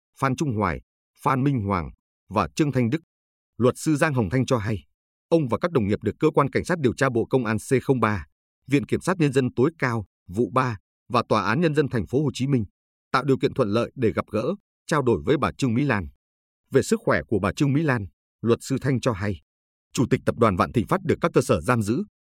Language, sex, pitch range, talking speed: Vietnamese, male, 95-135 Hz, 250 wpm